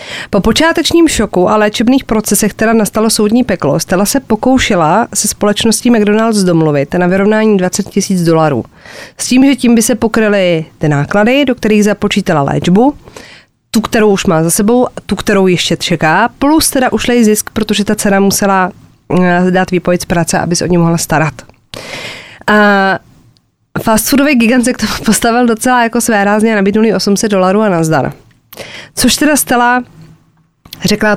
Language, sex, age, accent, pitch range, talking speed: Czech, female, 30-49, native, 180-230 Hz, 160 wpm